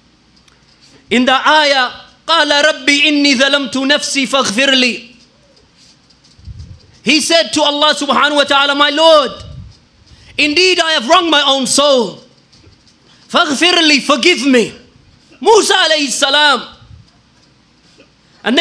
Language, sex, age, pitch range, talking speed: English, male, 30-49, 275-315 Hz, 95 wpm